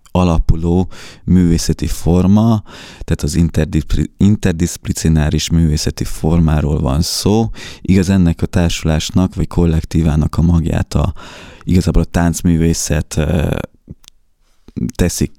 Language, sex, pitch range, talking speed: Hungarian, male, 80-90 Hz, 85 wpm